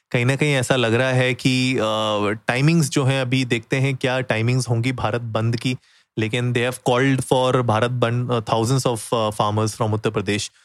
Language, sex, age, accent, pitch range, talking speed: Hindi, male, 30-49, native, 115-130 Hz, 190 wpm